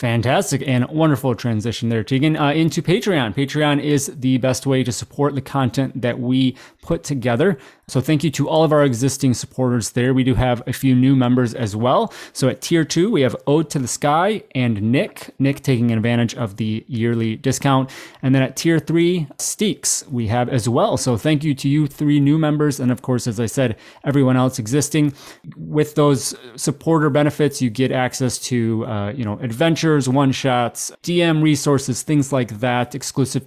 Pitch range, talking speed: 120-145 Hz, 190 wpm